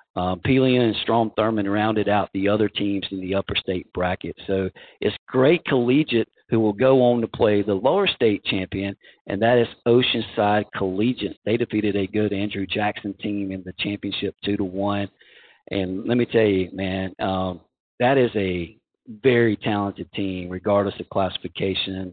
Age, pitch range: 50-69, 95-105 Hz